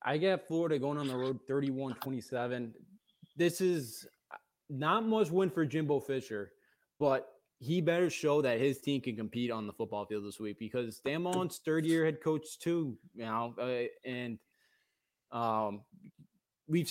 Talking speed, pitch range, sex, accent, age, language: 160 wpm, 120-155 Hz, male, American, 20-39, English